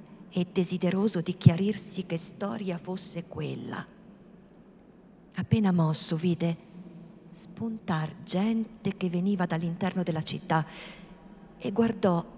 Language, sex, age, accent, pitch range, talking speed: Italian, female, 50-69, native, 180-215 Hz, 95 wpm